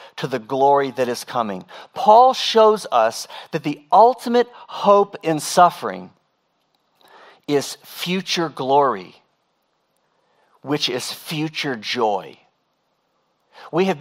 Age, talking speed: 40-59, 100 wpm